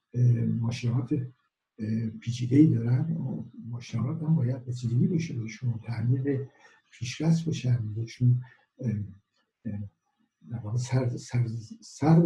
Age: 60-79